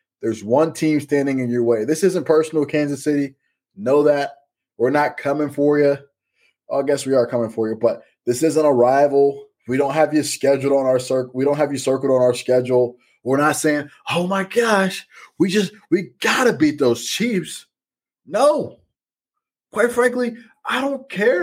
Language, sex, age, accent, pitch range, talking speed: English, male, 20-39, American, 125-170 Hz, 190 wpm